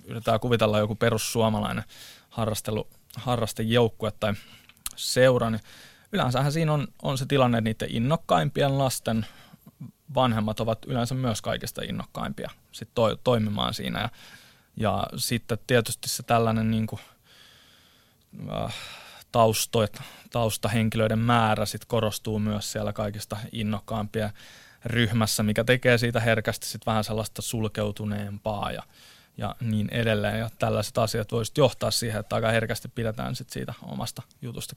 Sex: male